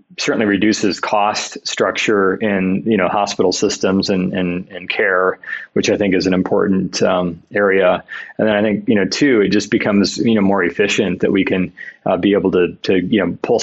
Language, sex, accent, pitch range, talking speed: English, male, American, 95-100 Hz, 205 wpm